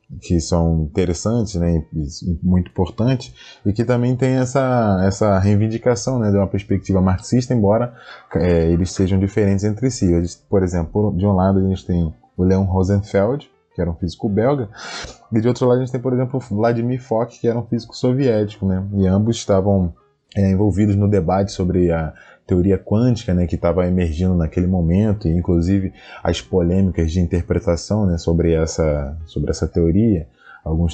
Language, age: Portuguese, 20-39